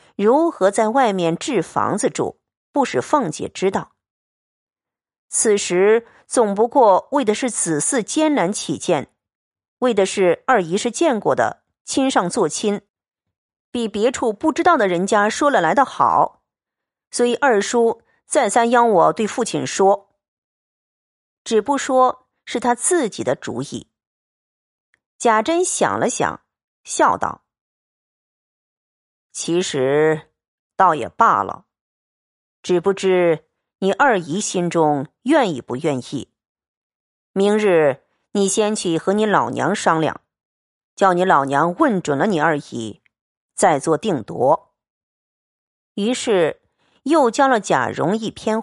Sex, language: female, Chinese